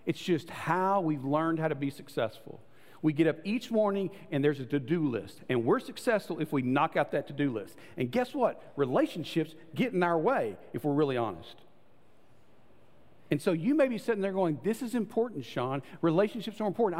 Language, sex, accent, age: English, male, American, 50-69